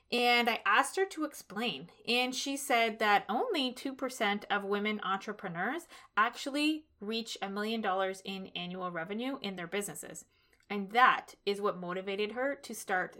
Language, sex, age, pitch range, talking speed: English, female, 20-39, 210-275 Hz, 160 wpm